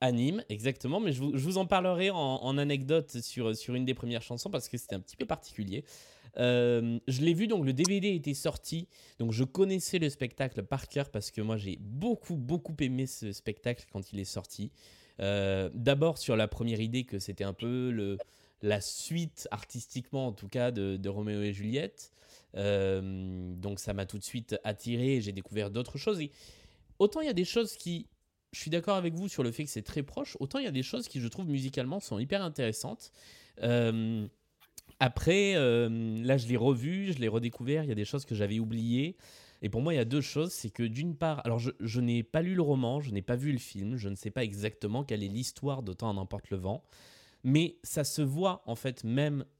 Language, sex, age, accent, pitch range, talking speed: French, male, 20-39, French, 110-150 Hz, 225 wpm